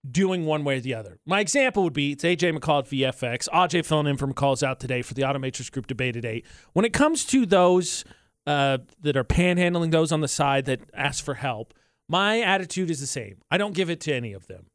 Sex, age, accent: male, 30-49, American